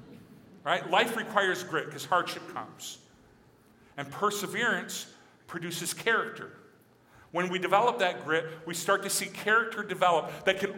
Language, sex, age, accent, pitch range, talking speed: English, male, 40-59, American, 145-195 Hz, 135 wpm